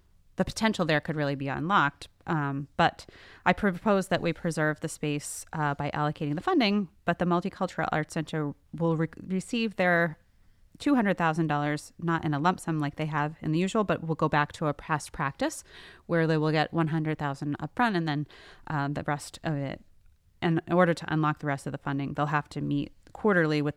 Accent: American